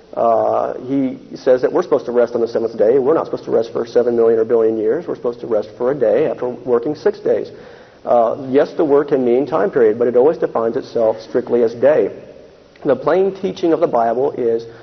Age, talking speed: 50-69, 230 wpm